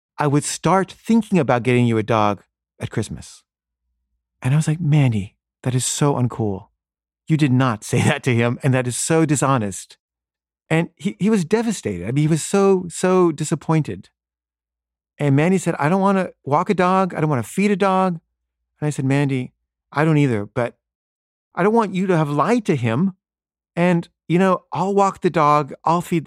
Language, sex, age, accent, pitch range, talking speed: English, male, 40-59, American, 105-150 Hz, 200 wpm